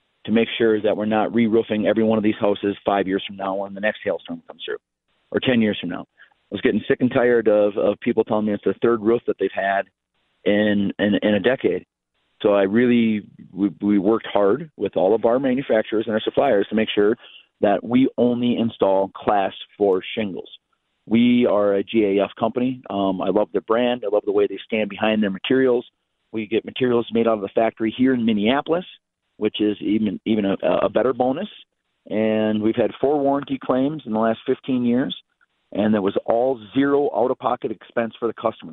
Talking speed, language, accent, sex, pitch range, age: 210 wpm, English, American, male, 105-125 Hz, 40-59